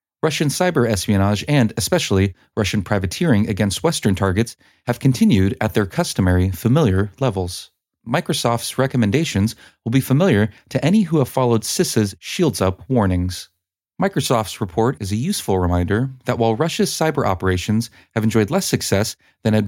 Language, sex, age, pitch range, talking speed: English, male, 30-49, 95-130 Hz, 145 wpm